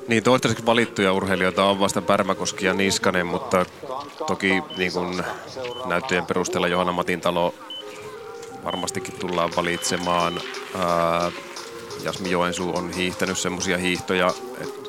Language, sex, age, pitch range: Finnish, male, 30-49, 90-105 Hz